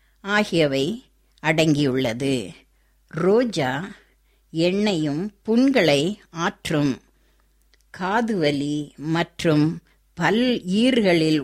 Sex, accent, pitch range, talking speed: female, native, 145-200 Hz, 50 wpm